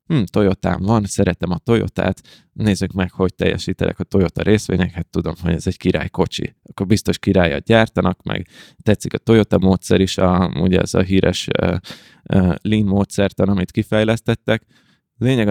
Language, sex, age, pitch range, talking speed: Hungarian, male, 20-39, 95-110 Hz, 165 wpm